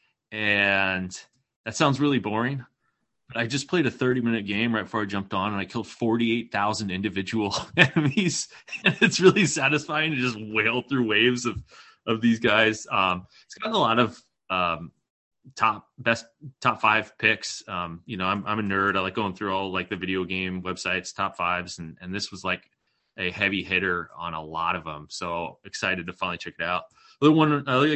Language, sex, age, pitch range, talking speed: English, male, 20-39, 90-120 Hz, 195 wpm